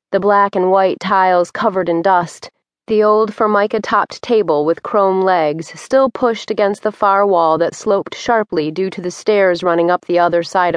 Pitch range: 180-215 Hz